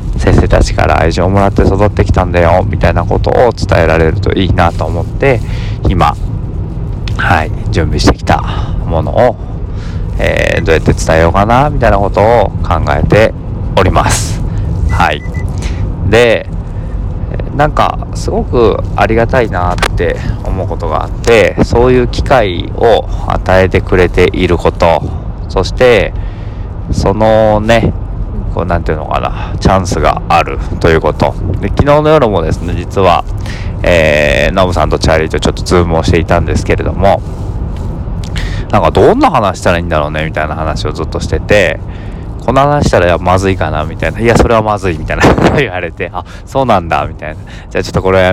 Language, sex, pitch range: Japanese, male, 85-105 Hz